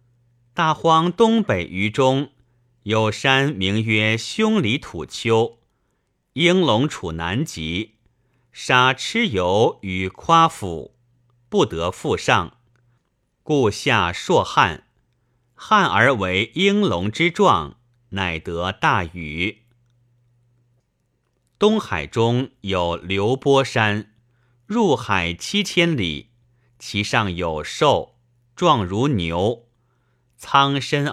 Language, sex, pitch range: Chinese, male, 105-135 Hz